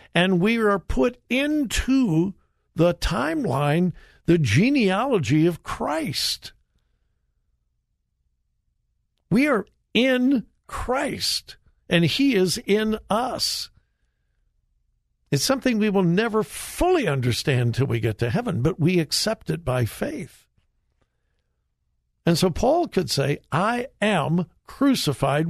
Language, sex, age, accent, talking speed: English, male, 60-79, American, 110 wpm